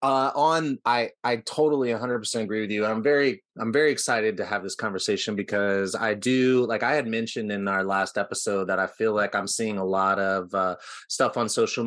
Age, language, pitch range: 30-49, English, 105-120 Hz